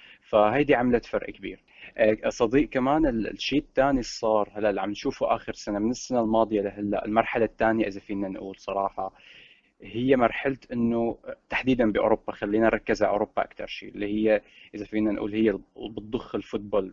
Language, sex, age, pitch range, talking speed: Arabic, male, 20-39, 100-115 Hz, 150 wpm